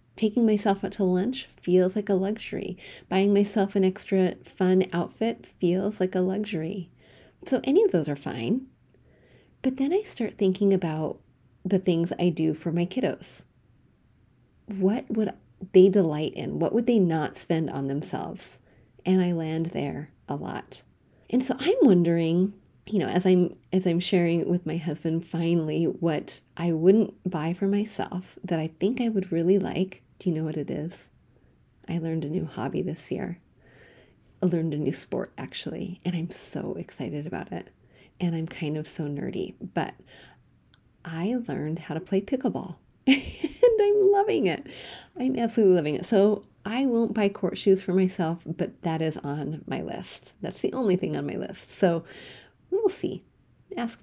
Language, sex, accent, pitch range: English, female, American, 165-205 Hz